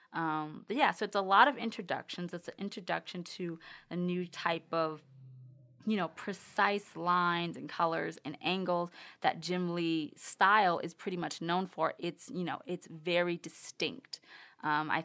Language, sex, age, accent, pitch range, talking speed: English, female, 20-39, American, 160-205 Hz, 170 wpm